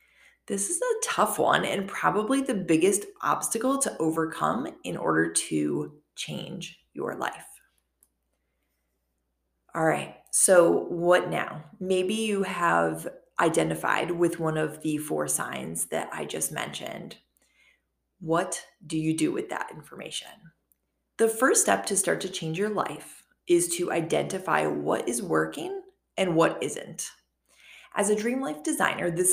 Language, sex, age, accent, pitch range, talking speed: English, female, 20-39, American, 150-235 Hz, 140 wpm